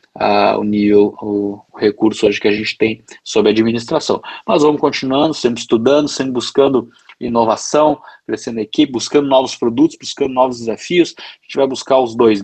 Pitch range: 110-130 Hz